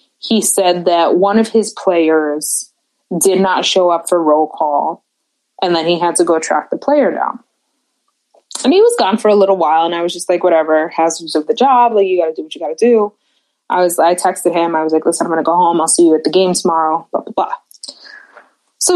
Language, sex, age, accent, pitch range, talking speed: English, female, 20-39, American, 170-235 Hz, 245 wpm